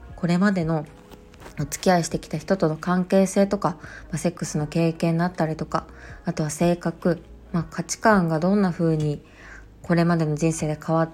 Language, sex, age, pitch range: Japanese, female, 20-39, 155-185 Hz